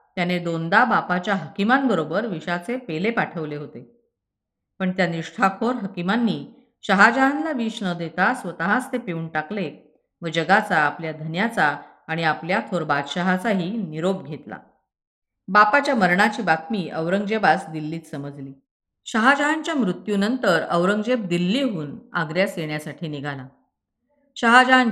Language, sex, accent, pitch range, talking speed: Marathi, female, native, 160-220 Hz, 105 wpm